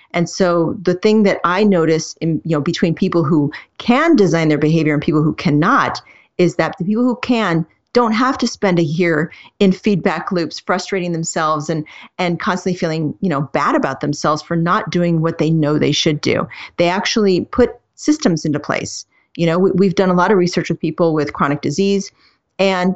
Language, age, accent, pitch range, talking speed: English, 40-59, American, 165-205 Hz, 200 wpm